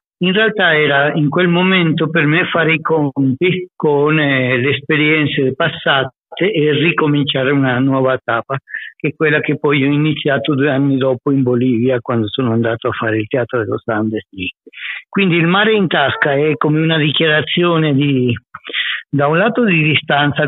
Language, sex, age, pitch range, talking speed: Italian, male, 60-79, 125-155 Hz, 165 wpm